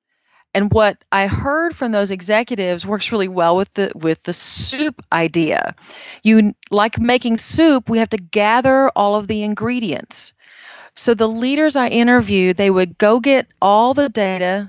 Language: English